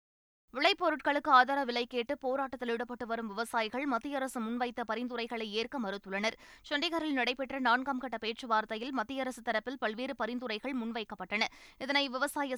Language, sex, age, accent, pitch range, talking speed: Tamil, female, 20-39, native, 220-270 Hz, 120 wpm